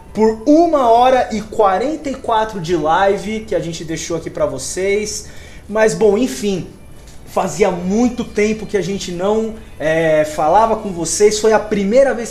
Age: 20-39